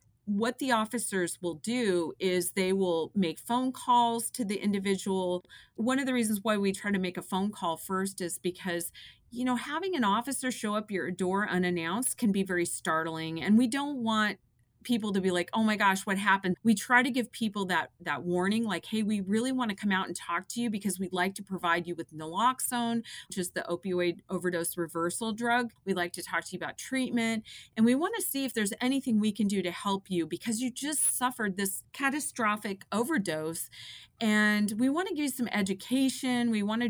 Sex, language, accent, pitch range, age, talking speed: female, English, American, 175-230 Hz, 30-49, 215 wpm